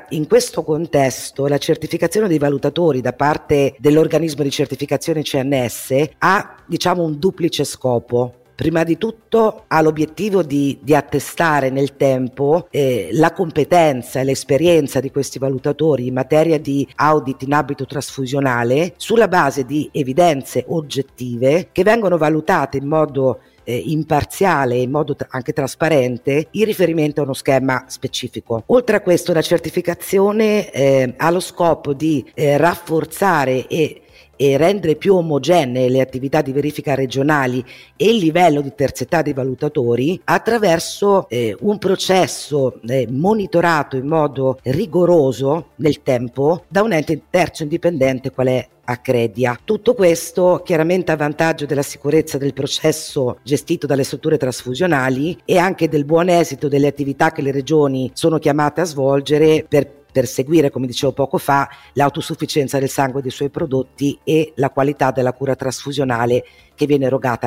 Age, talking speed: 50-69, 145 wpm